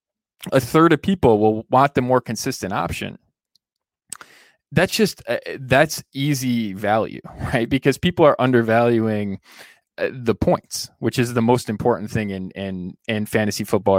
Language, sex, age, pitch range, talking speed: English, male, 20-39, 100-135 Hz, 150 wpm